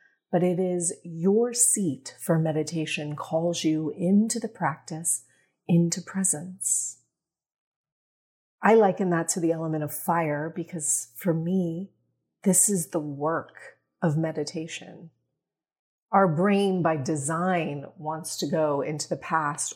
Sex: female